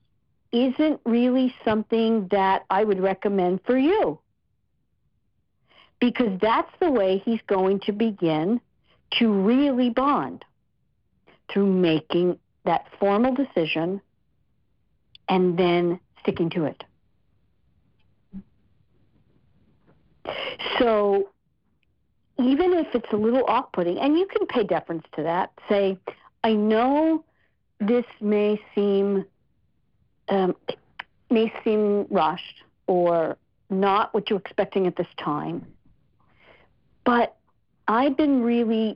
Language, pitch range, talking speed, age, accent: English, 185-235 Hz, 100 wpm, 50-69, American